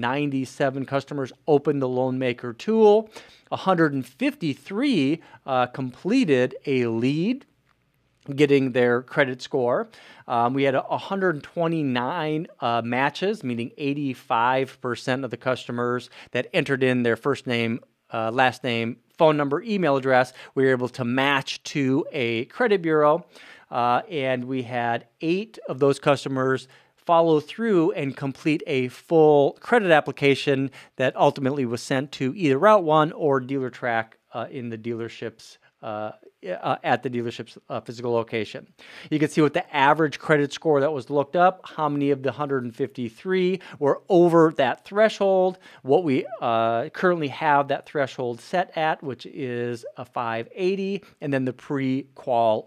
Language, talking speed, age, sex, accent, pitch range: English, 140 wpm, 40-59, male, American, 125-155 Hz